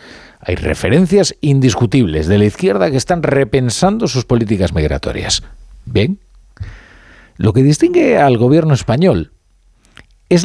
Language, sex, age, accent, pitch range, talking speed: Spanish, male, 50-69, Spanish, 90-140 Hz, 115 wpm